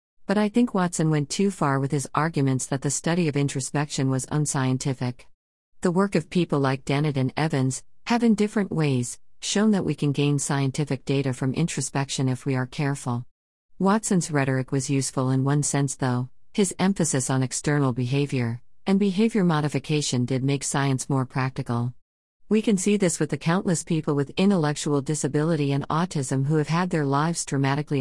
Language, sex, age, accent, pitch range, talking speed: English, female, 50-69, American, 135-165 Hz, 175 wpm